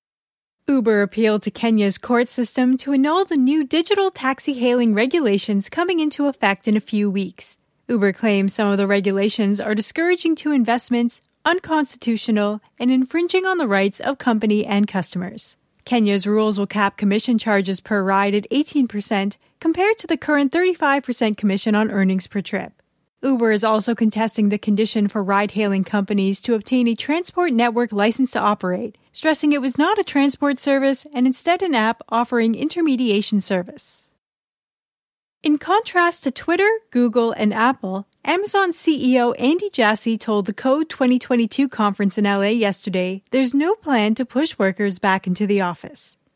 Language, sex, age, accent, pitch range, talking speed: English, female, 30-49, American, 205-280 Hz, 155 wpm